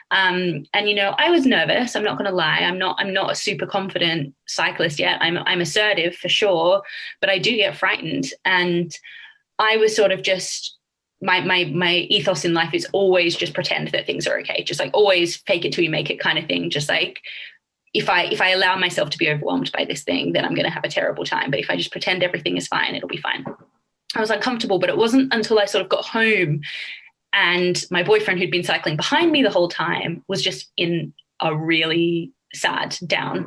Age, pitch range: 20-39, 175-225 Hz